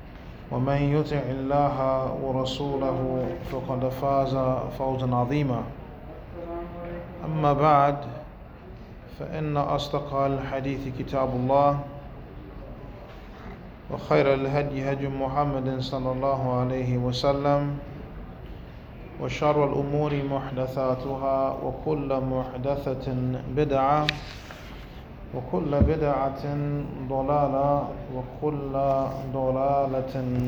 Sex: male